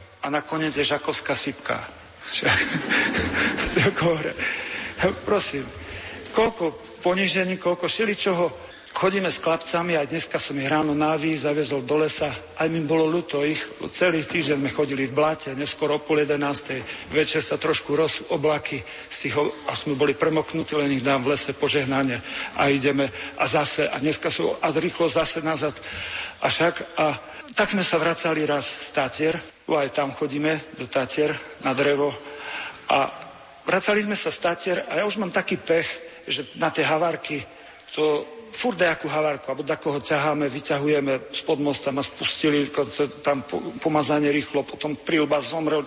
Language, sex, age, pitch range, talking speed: Slovak, male, 50-69, 145-165 Hz, 150 wpm